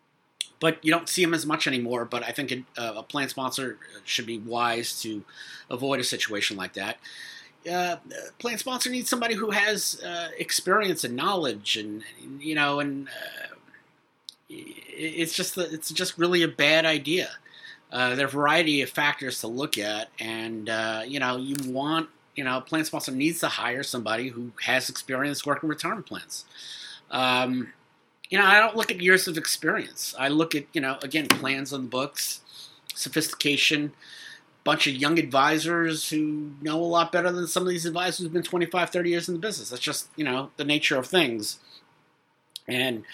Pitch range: 125-165 Hz